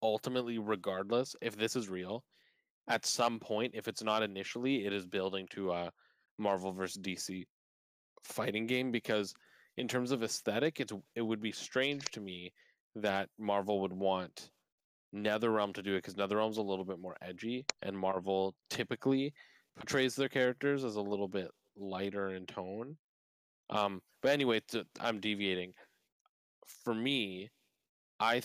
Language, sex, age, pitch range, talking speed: English, male, 20-39, 95-115 Hz, 150 wpm